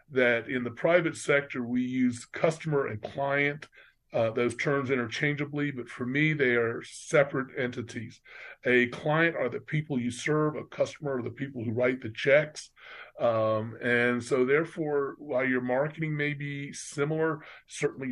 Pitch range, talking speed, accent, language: 125-155 Hz, 160 wpm, American, English